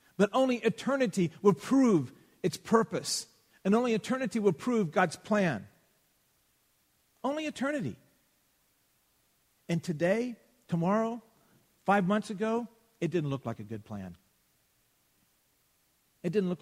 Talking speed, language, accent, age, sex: 115 wpm, English, American, 50-69, male